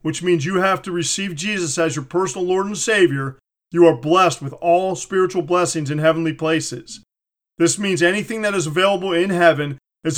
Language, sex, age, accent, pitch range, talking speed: English, male, 40-59, American, 160-180 Hz, 190 wpm